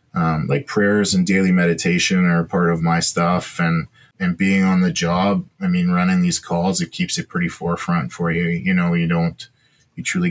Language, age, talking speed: English, 20-39, 205 wpm